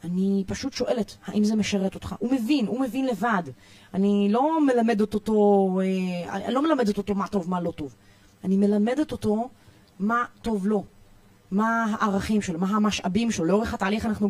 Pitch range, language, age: 190-265 Hz, Hebrew, 20-39